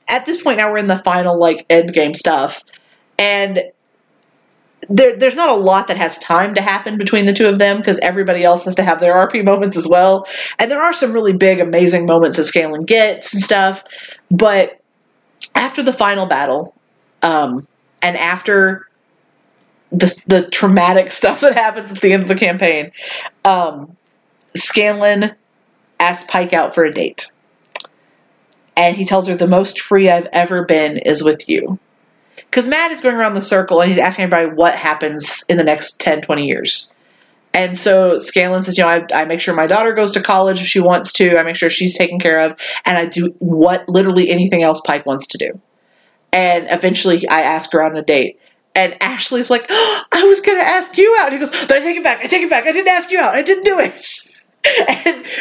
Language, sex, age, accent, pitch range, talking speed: English, female, 30-49, American, 175-220 Hz, 205 wpm